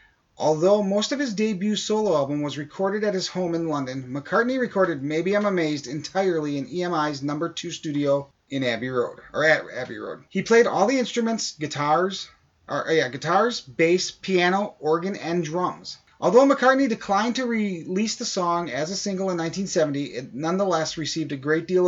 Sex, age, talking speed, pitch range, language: male, 30-49, 180 wpm, 155-215 Hz, English